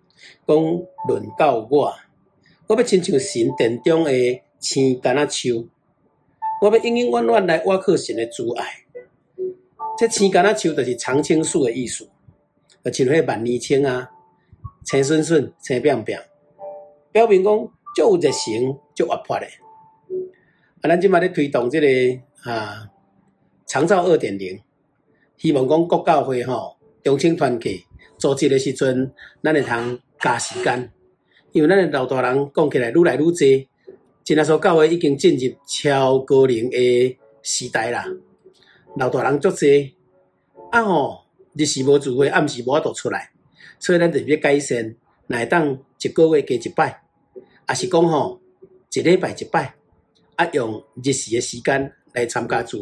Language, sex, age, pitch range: Chinese, male, 50-69, 130-195 Hz